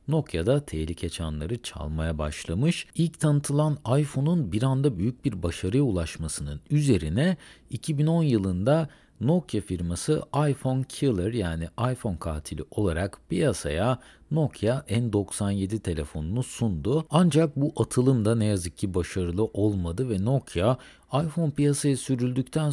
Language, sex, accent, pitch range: Turkish, male, native, 95-145 Hz